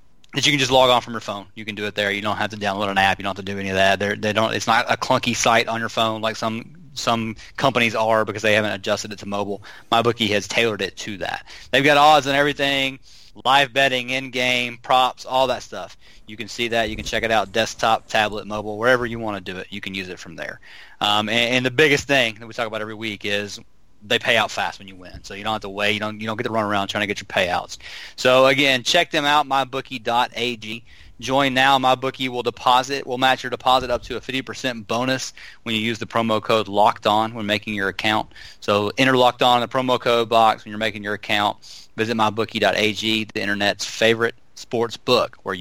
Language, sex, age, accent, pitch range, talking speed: English, male, 30-49, American, 105-130 Hz, 245 wpm